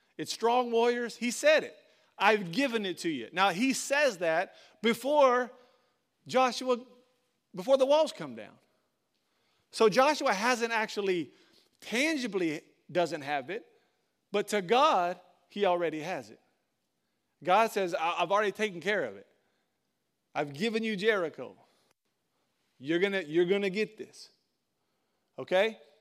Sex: male